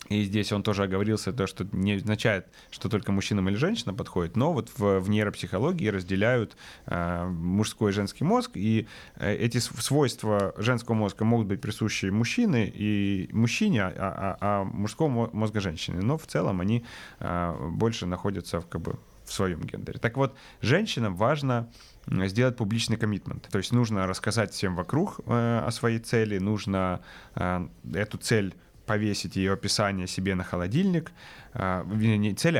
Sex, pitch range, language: male, 95-115 Hz, Ukrainian